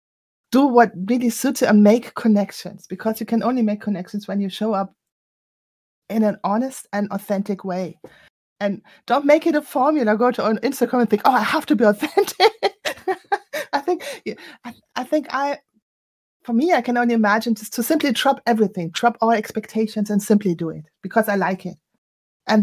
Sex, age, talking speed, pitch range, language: female, 30-49, 185 wpm, 190-230 Hz, English